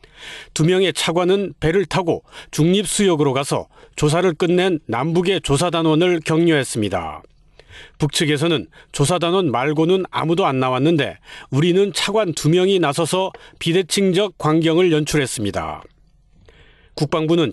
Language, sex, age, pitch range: Korean, male, 40-59, 155-185 Hz